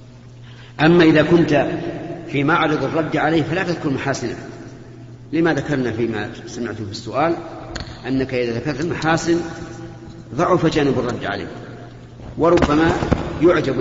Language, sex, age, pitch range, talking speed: Arabic, male, 50-69, 120-150 Hz, 115 wpm